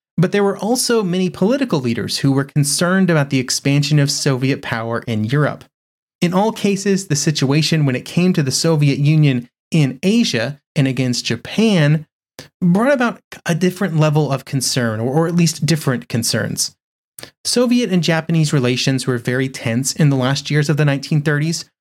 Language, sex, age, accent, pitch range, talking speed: English, male, 30-49, American, 130-170 Hz, 170 wpm